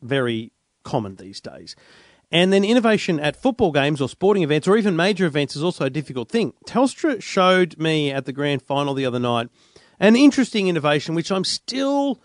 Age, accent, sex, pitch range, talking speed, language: 40-59, Australian, male, 130-185 Hz, 185 wpm, English